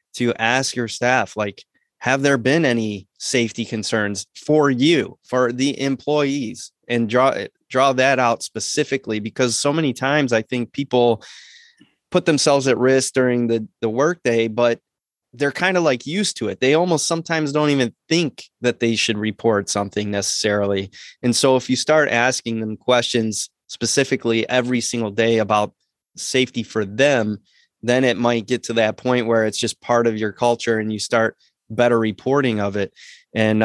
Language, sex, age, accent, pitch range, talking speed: English, male, 20-39, American, 110-130 Hz, 170 wpm